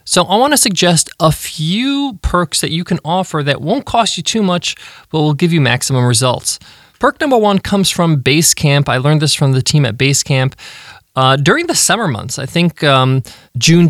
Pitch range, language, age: 135-180 Hz, English, 20-39